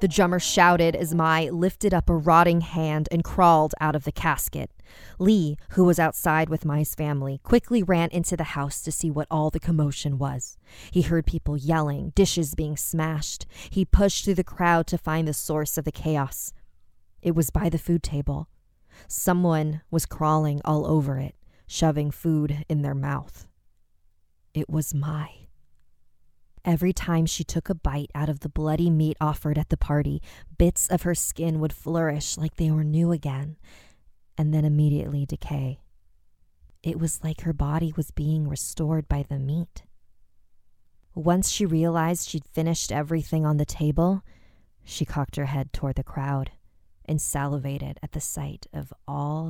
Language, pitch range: English, 140-165 Hz